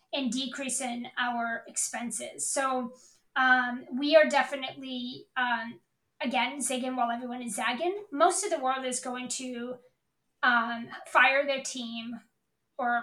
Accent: American